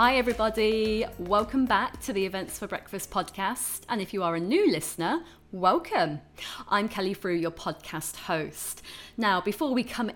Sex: female